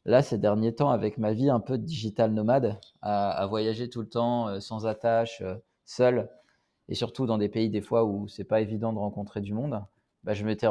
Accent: French